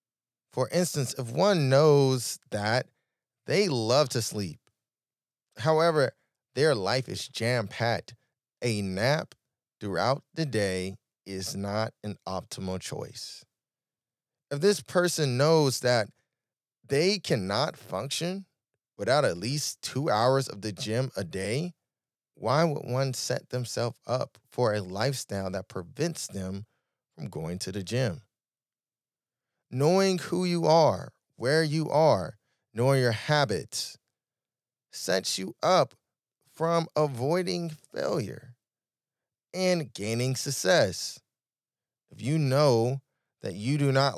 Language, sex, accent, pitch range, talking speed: English, male, American, 115-155 Hz, 115 wpm